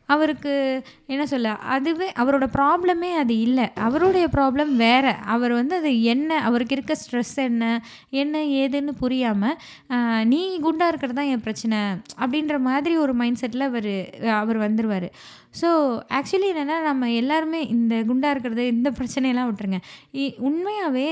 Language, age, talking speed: Tamil, 20-39, 135 wpm